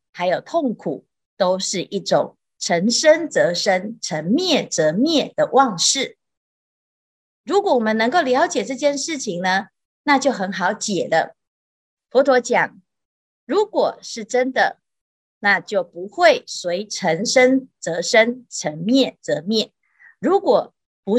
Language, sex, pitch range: Chinese, female, 185-275 Hz